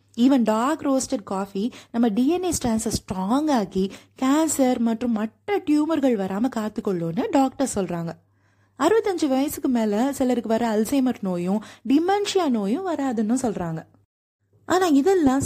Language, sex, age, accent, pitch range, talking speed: Tamil, female, 20-39, native, 210-285 Hz, 80 wpm